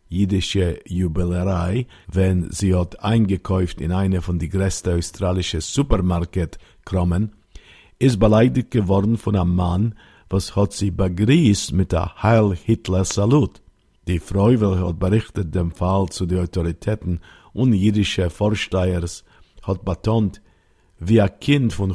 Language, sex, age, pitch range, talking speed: Hebrew, male, 50-69, 90-105 Hz, 130 wpm